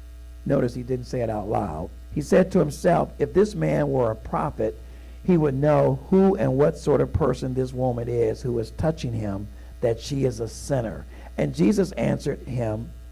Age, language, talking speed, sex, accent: 60-79, English, 190 wpm, male, American